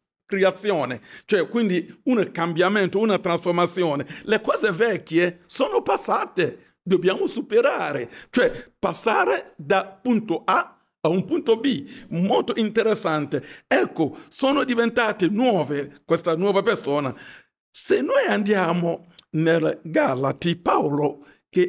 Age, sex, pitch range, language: 60-79, male, 160-230 Hz, Italian